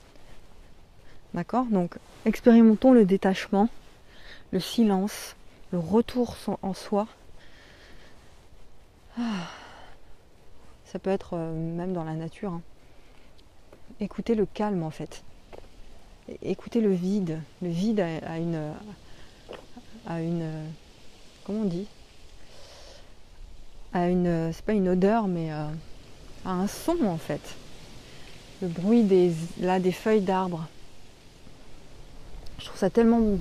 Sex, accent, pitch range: female, French, 175-210 Hz